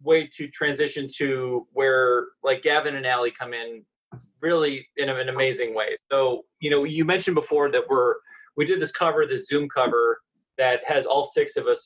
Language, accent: English, American